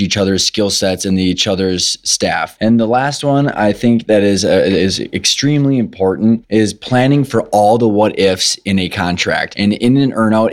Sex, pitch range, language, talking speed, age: male, 100-115 Hz, English, 200 wpm, 20-39